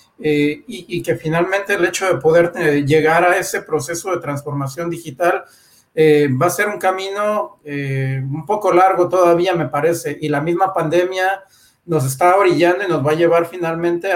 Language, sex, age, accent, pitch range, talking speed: Spanish, male, 40-59, Mexican, 155-185 Hz, 185 wpm